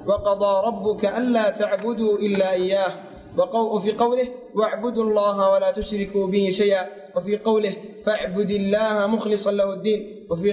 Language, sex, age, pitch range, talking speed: Arabic, male, 20-39, 200-225 Hz, 130 wpm